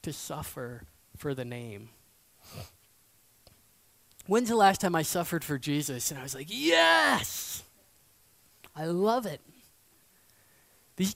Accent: American